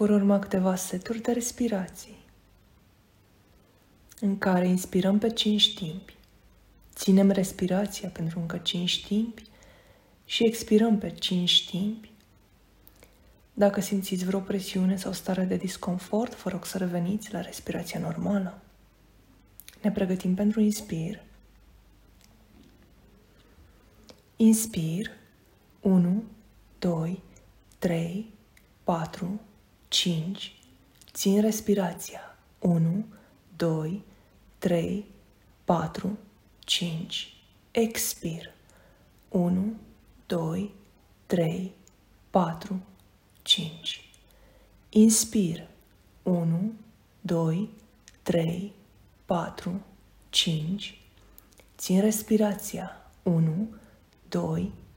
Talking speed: 80 wpm